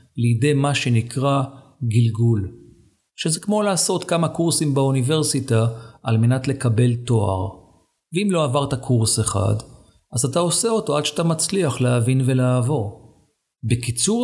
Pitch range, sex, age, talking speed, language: 120-155 Hz, male, 50-69, 120 wpm, Hebrew